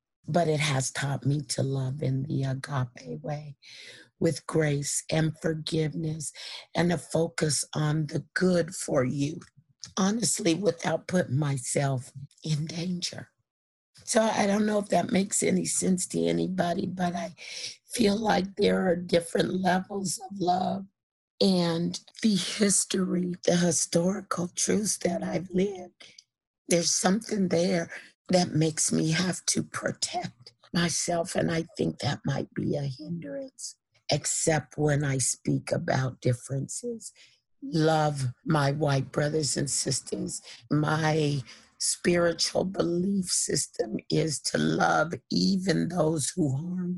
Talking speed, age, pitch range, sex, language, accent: 130 wpm, 50-69, 150-180 Hz, female, English, American